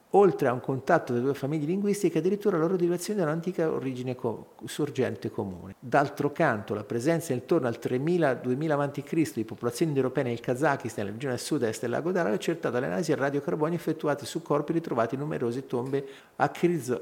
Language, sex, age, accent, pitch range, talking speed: Italian, male, 50-69, native, 125-175 Hz, 185 wpm